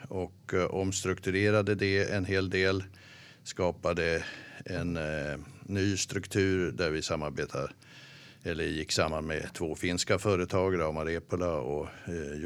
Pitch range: 80-110 Hz